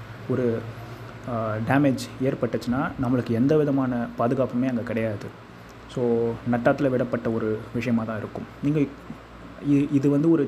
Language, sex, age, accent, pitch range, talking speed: Tamil, male, 20-39, native, 120-145 Hz, 110 wpm